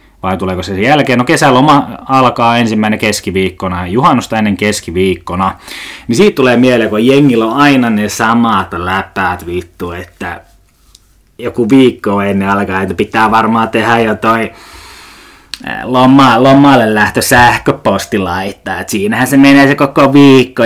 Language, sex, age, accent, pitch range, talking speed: Finnish, male, 20-39, native, 100-130 Hz, 135 wpm